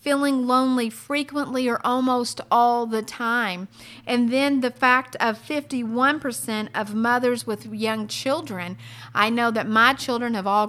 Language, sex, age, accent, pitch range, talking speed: English, female, 50-69, American, 210-250 Hz, 145 wpm